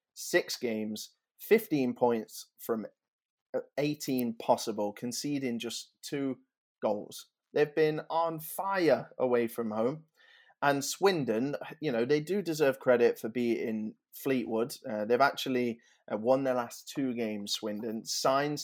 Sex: male